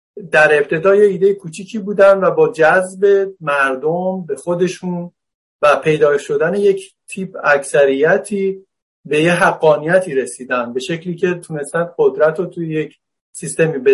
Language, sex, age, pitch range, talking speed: Persian, male, 50-69, 155-200 Hz, 135 wpm